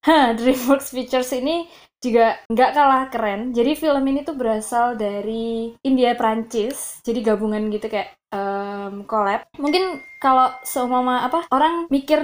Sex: female